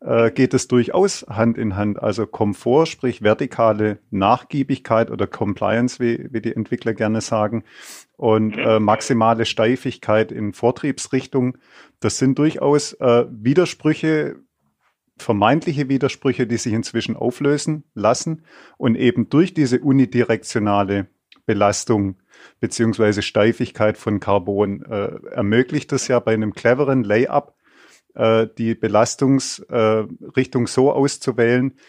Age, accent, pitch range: 30-49, German, 110-135 Hz